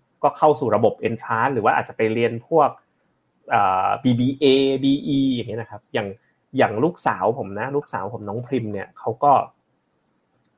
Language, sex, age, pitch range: Thai, male, 20-39, 105-140 Hz